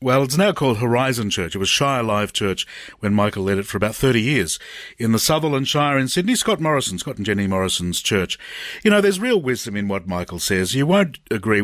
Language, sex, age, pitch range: English, male, 50-69, 100-130 Hz